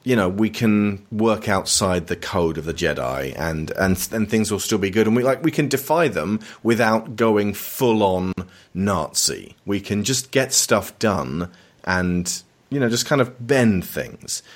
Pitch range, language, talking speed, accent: 85-110 Hz, English, 180 wpm, British